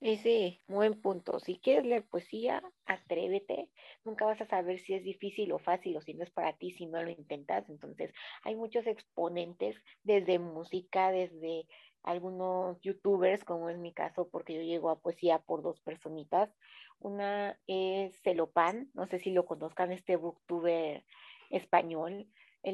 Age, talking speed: 40-59, 160 wpm